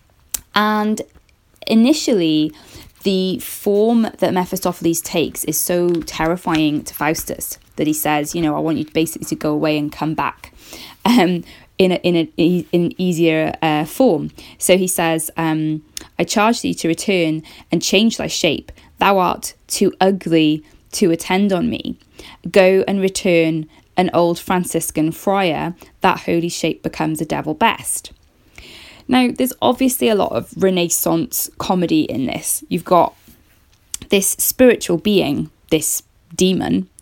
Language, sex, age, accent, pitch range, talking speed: English, female, 20-39, British, 160-195 Hz, 145 wpm